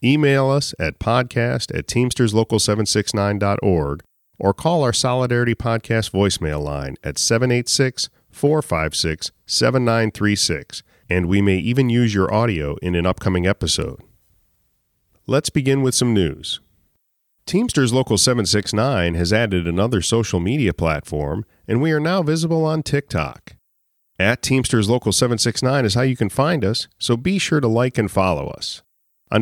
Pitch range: 90-125 Hz